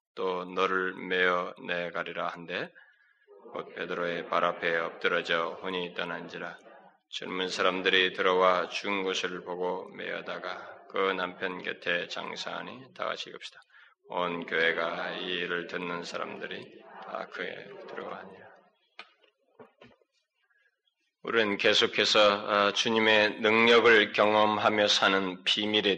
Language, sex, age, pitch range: Korean, male, 20-39, 90-115 Hz